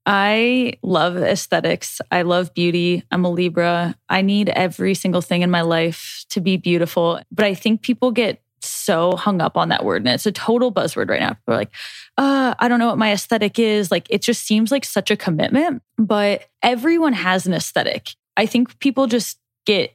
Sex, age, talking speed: female, 10-29, 200 wpm